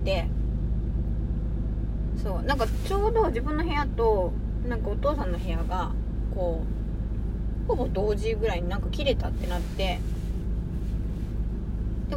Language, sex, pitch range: Japanese, female, 70-80 Hz